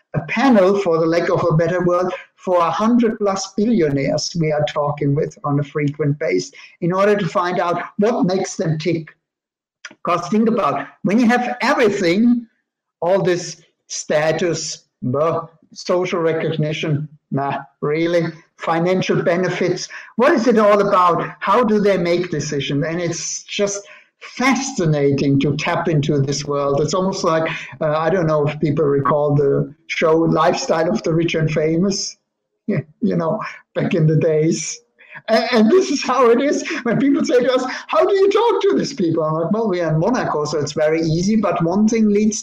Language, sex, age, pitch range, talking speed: English, male, 60-79, 155-210 Hz, 180 wpm